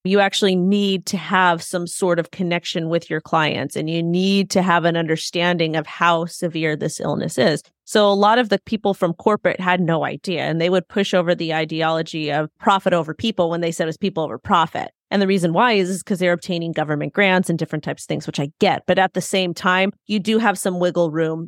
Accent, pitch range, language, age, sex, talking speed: American, 160-190 Hz, English, 30-49, female, 235 wpm